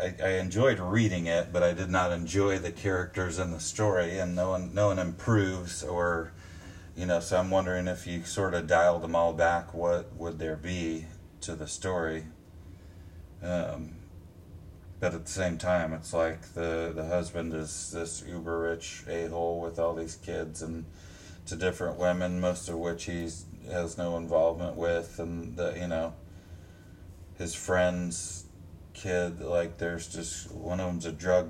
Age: 30-49